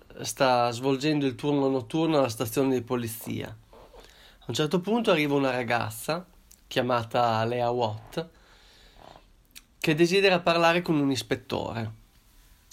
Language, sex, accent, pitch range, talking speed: Italian, male, native, 115-155 Hz, 120 wpm